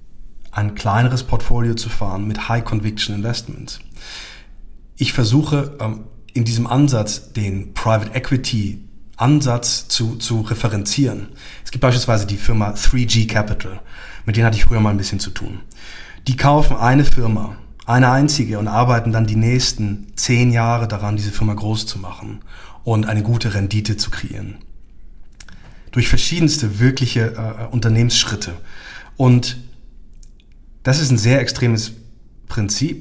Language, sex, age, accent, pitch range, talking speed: German, male, 30-49, German, 105-125 Hz, 130 wpm